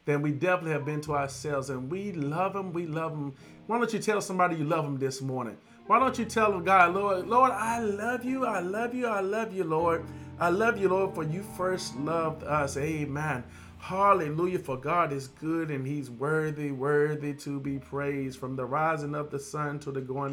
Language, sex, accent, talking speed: English, male, American, 215 wpm